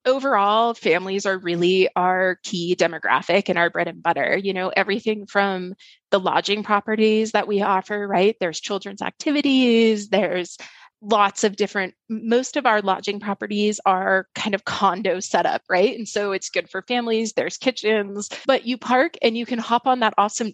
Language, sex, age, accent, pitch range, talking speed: English, female, 20-39, American, 195-240 Hz, 175 wpm